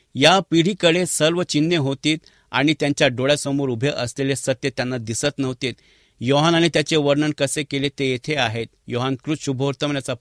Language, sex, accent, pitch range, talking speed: English, male, Indian, 125-150 Hz, 165 wpm